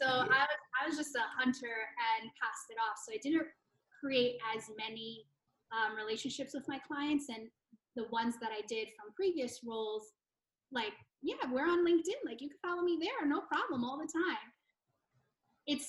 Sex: female